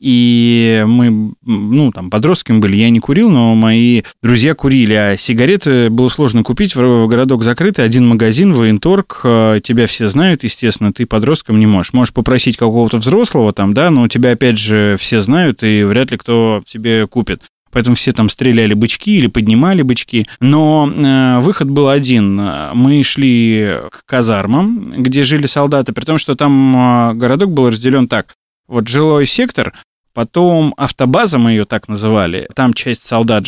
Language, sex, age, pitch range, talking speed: Russian, male, 20-39, 115-145 Hz, 160 wpm